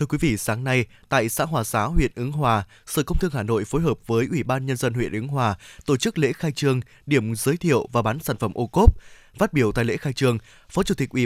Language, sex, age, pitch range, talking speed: Vietnamese, male, 20-39, 120-160 Hz, 270 wpm